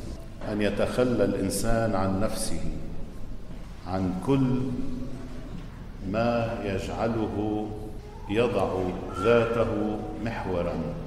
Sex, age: male, 50-69